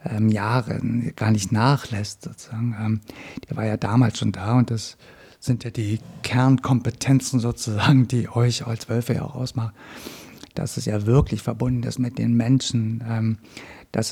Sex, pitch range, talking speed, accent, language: male, 110-130 Hz, 150 wpm, German, German